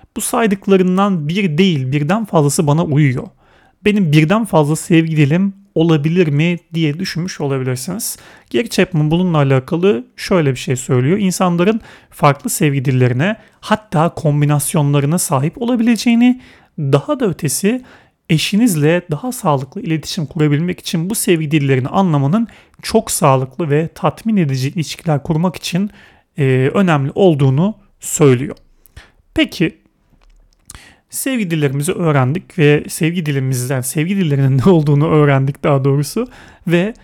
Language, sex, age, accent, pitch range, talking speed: Turkish, male, 40-59, native, 145-195 Hz, 120 wpm